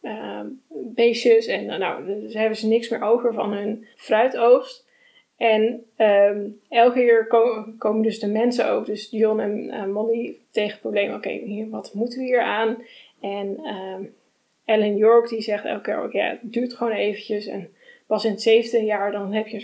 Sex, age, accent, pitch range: female, 10-29, Dutch, 210-240 Hz